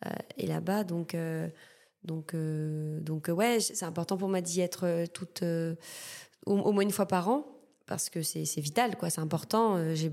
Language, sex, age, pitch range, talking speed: French, female, 20-39, 170-200 Hz, 195 wpm